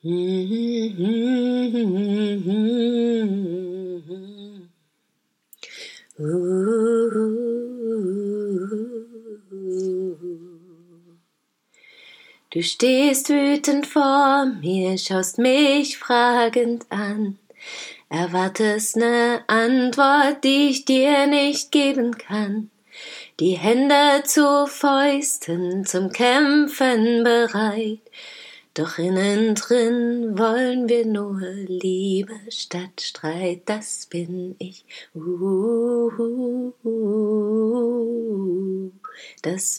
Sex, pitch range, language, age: female, 185-240 Hz, German, 30-49